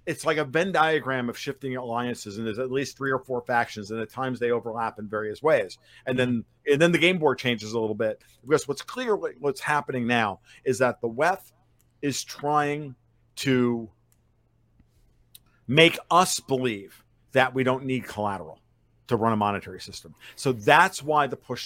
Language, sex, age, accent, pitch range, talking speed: English, male, 50-69, American, 120-145 Hz, 185 wpm